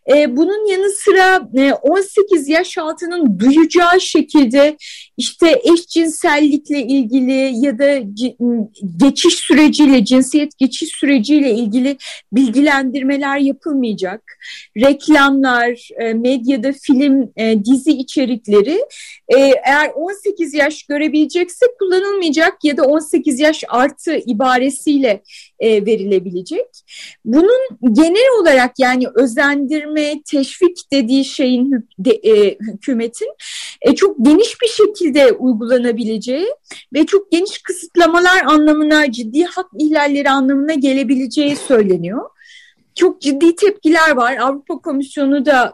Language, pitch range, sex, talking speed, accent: Turkish, 260-340 Hz, female, 95 wpm, native